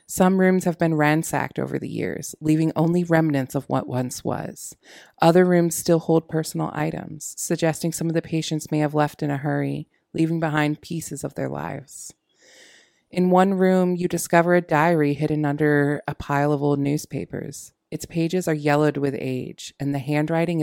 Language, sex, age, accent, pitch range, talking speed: English, female, 30-49, American, 145-165 Hz, 175 wpm